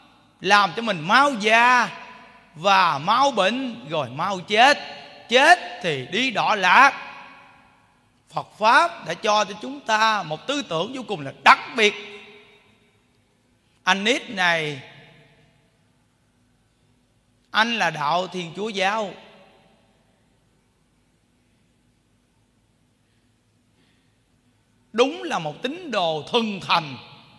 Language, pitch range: Vietnamese, 140-235 Hz